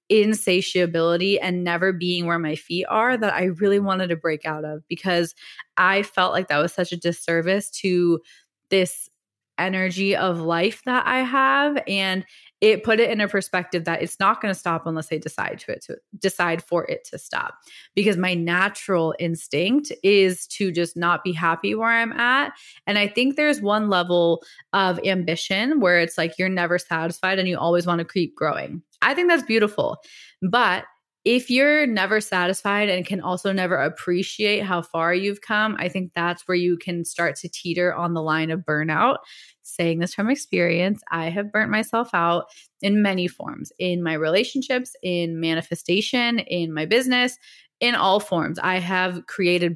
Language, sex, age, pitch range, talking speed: English, female, 20-39, 170-210 Hz, 180 wpm